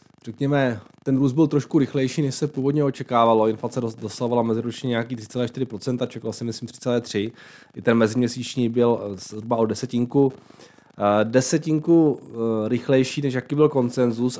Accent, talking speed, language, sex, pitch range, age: native, 130 wpm, Czech, male, 115-145 Hz, 20-39